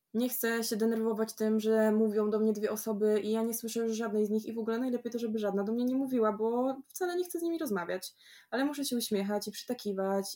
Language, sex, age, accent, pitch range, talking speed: Polish, female, 20-39, native, 195-235 Hz, 245 wpm